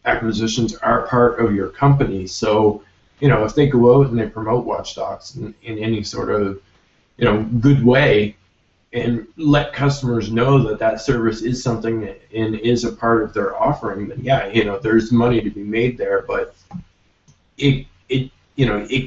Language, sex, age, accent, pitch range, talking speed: English, male, 20-39, American, 105-125 Hz, 190 wpm